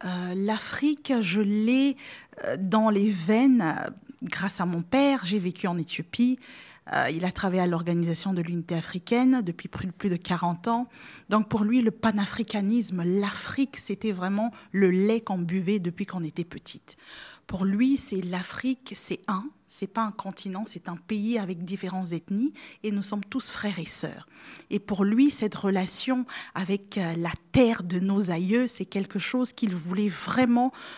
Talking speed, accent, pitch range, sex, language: 165 wpm, French, 180-225 Hz, female, French